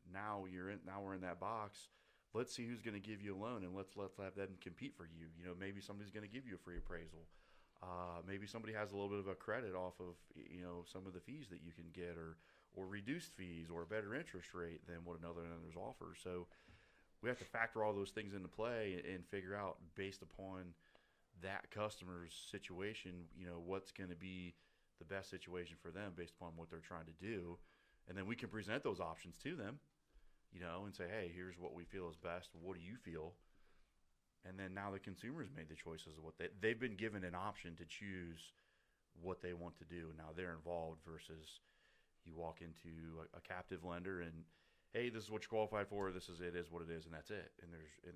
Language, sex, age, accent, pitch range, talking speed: English, male, 30-49, American, 85-100 Hz, 235 wpm